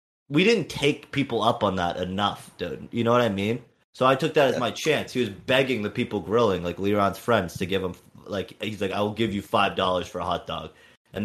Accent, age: American, 30-49